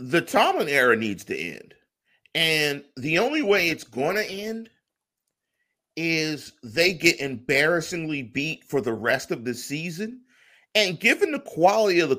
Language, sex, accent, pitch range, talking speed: English, male, American, 135-200 Hz, 155 wpm